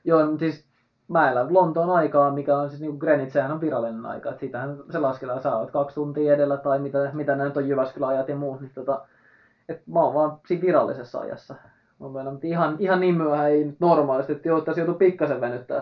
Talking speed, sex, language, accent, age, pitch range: 185 wpm, male, Finnish, native, 20-39, 125-150 Hz